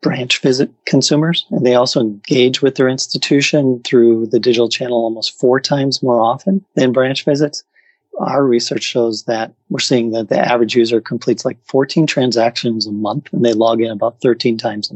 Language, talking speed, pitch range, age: English, 185 wpm, 115-140 Hz, 30-49